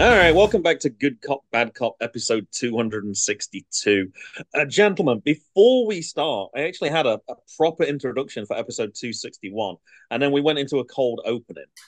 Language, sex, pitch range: English, male, 115-150 Hz